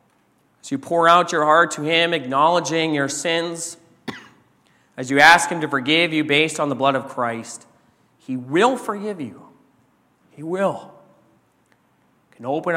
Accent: American